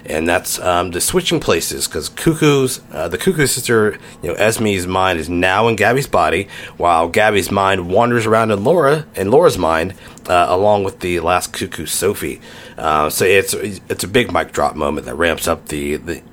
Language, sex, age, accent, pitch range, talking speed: English, male, 30-49, American, 85-115 Hz, 195 wpm